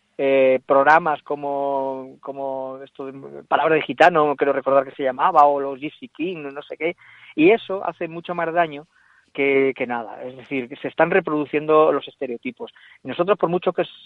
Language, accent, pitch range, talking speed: Spanish, Spanish, 140-160 Hz, 170 wpm